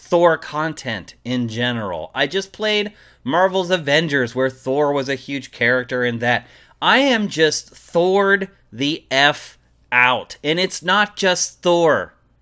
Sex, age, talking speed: male, 30-49, 140 wpm